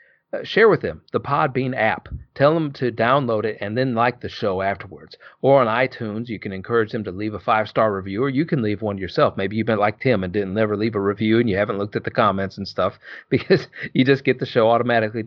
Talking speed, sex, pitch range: 250 wpm, male, 105-130 Hz